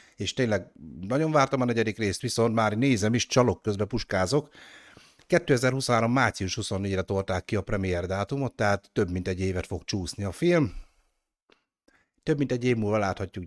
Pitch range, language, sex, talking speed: 95-120 Hz, Hungarian, male, 165 wpm